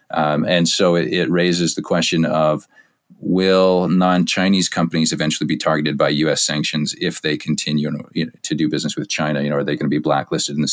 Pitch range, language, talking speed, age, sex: 80-90 Hz, English, 200 wpm, 30-49, male